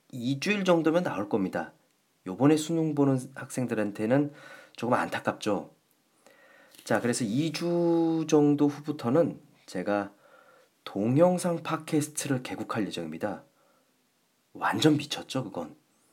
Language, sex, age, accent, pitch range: Korean, male, 40-59, native, 125-165 Hz